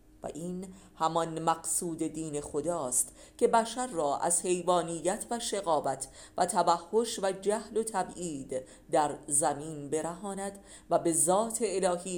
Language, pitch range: Persian, 150-200 Hz